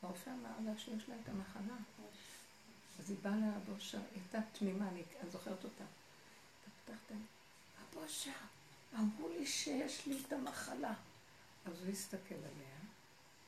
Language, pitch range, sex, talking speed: Hebrew, 185-255 Hz, female, 130 wpm